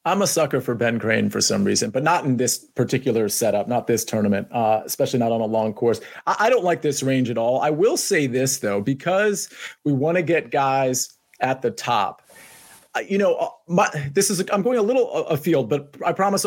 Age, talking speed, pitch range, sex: 30-49, 235 wpm, 130-165 Hz, male